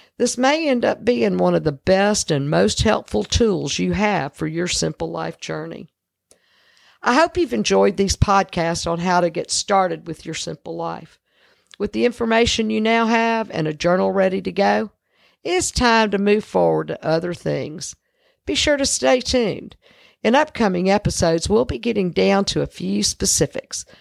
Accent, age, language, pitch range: American, 50-69, English, 165-225 Hz